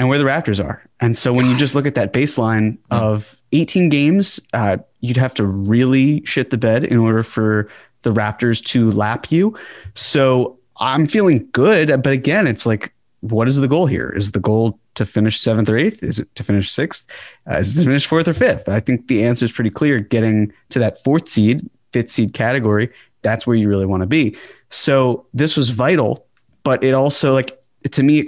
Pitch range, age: 110-135 Hz, 20-39